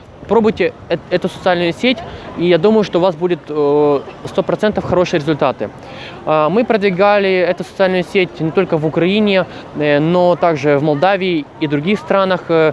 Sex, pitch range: male, 155-195 Hz